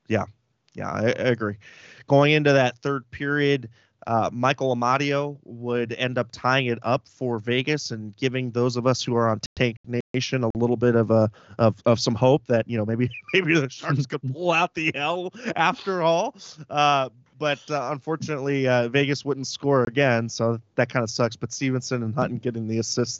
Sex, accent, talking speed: male, American, 195 wpm